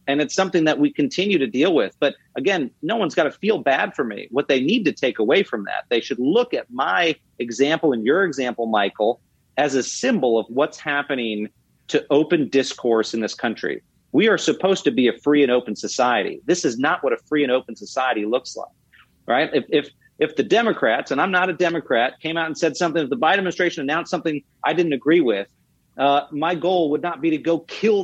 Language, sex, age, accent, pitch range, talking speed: English, male, 40-59, American, 125-165 Hz, 225 wpm